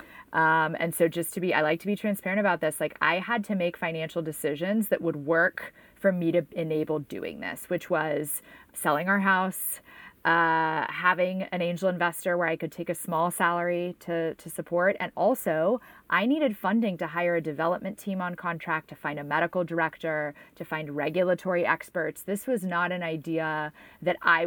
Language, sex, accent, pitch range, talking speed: English, female, American, 160-185 Hz, 190 wpm